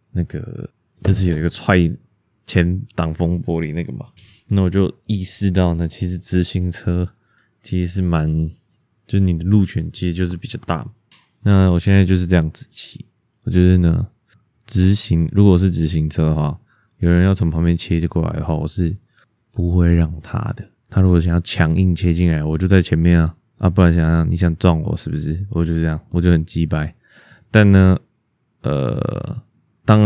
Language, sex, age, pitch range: Chinese, male, 20-39, 80-100 Hz